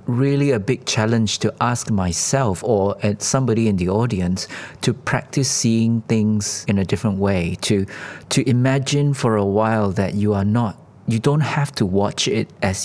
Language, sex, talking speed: English, male, 175 wpm